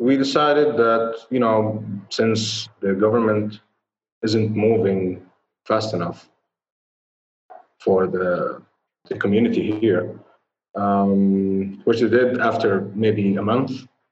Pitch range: 100-120 Hz